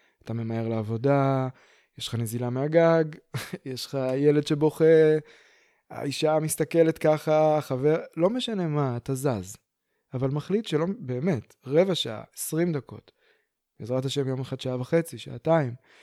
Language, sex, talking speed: Hebrew, male, 130 wpm